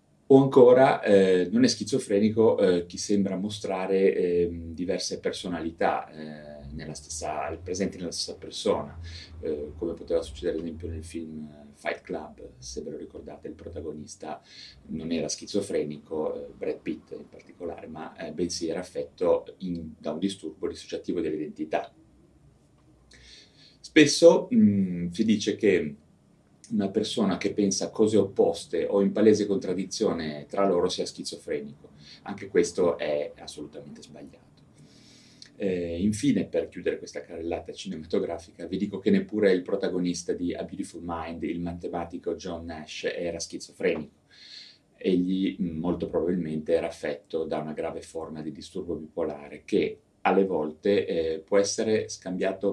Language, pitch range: Italian, 80-100 Hz